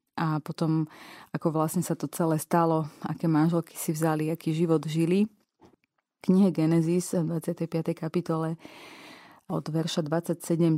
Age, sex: 30-49, female